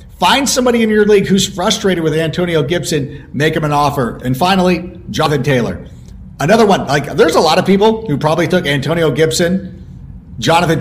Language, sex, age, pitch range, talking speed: English, male, 40-59, 130-175 Hz, 180 wpm